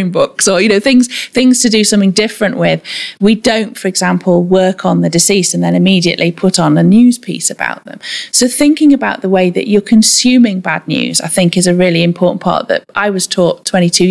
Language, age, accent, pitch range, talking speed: English, 30-49, British, 175-215 Hz, 215 wpm